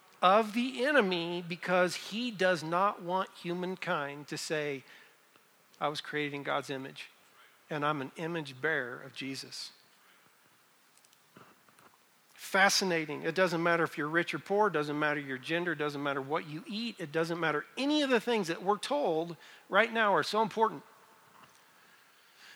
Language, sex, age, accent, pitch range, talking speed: English, male, 50-69, American, 155-195 Hz, 150 wpm